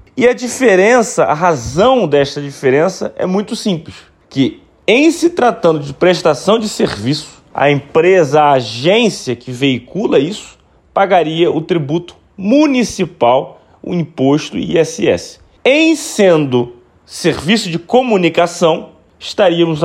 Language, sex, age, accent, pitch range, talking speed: Portuguese, male, 30-49, Brazilian, 140-200 Hz, 115 wpm